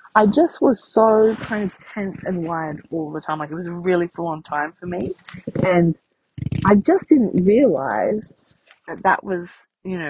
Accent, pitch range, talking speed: Australian, 170-255 Hz, 185 wpm